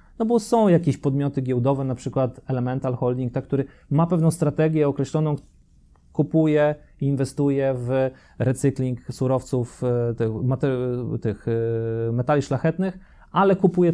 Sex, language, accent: male, Polish, native